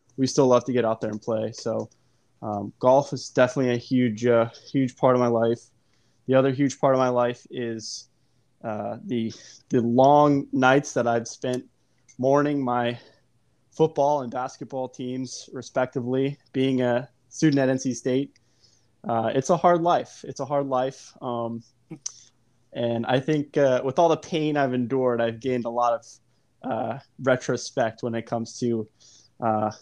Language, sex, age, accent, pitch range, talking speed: English, male, 20-39, American, 115-135 Hz, 165 wpm